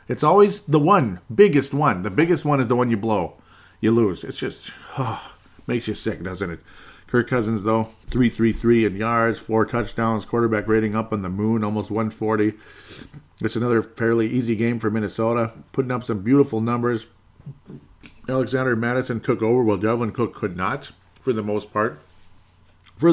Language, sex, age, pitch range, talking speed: English, male, 40-59, 100-115 Hz, 175 wpm